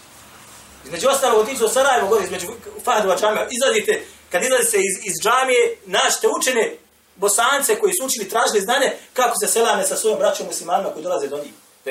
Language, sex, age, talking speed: English, male, 30-49, 180 wpm